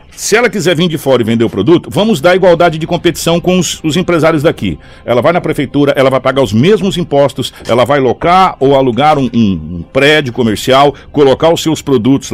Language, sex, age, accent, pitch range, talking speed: Portuguese, male, 60-79, Brazilian, 120-160 Hz, 215 wpm